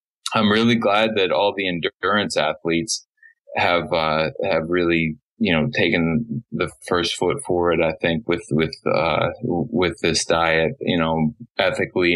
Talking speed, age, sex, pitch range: 150 wpm, 20-39, male, 85-115 Hz